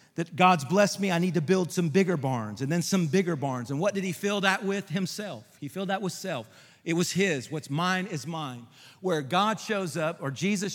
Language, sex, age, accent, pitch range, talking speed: English, male, 40-59, American, 150-195 Hz, 235 wpm